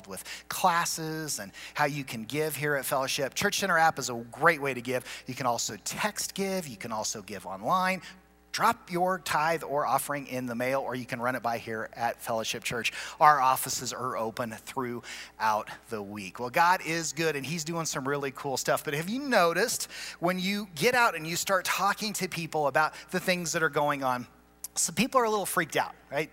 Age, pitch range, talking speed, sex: 30-49, 135-185 Hz, 215 wpm, male